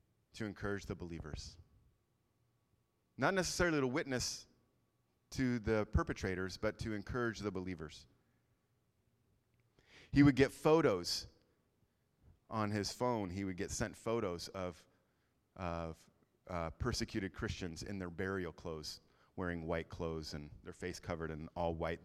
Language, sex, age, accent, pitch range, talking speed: English, male, 30-49, American, 90-125 Hz, 130 wpm